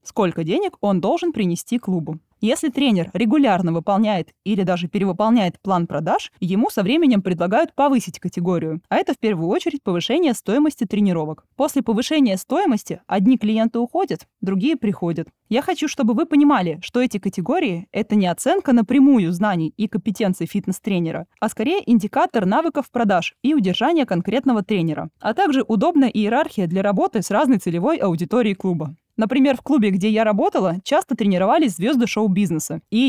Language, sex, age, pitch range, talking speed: Russian, female, 20-39, 185-260 Hz, 150 wpm